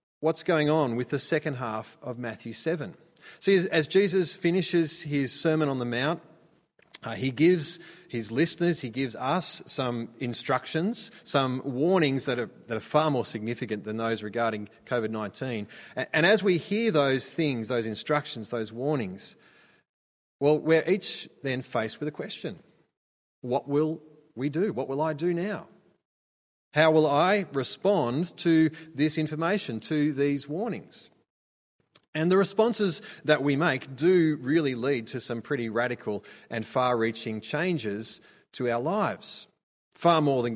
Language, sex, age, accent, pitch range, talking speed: English, male, 30-49, Australian, 125-170 Hz, 150 wpm